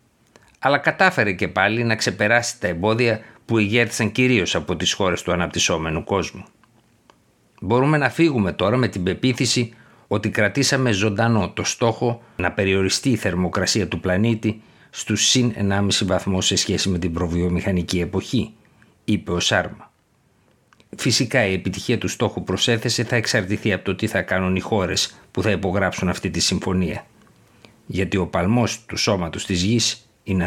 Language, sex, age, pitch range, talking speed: Greek, male, 60-79, 95-115 Hz, 150 wpm